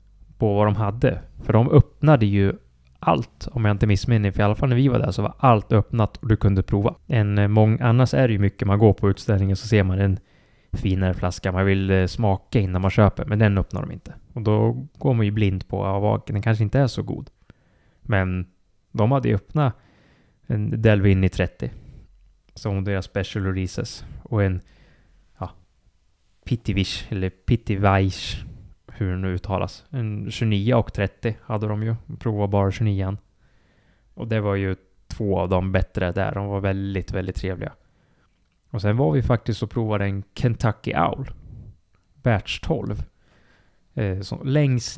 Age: 20-39